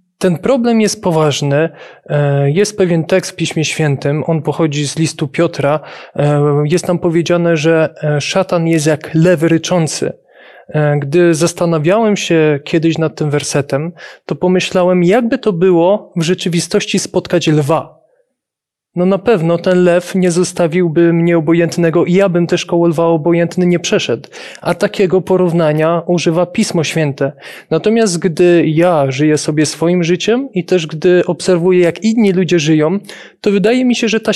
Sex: male